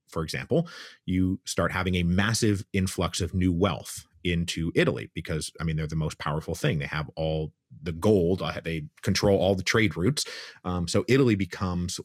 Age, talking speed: 30-49, 180 wpm